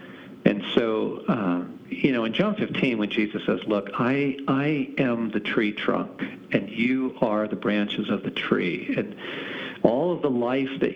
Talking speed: 175 wpm